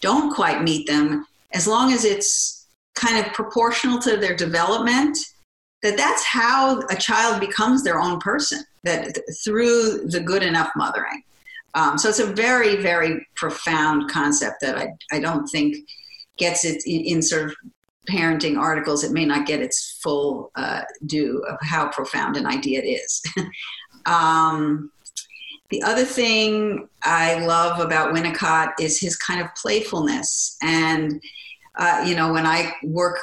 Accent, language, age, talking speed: American, English, 50-69, 155 wpm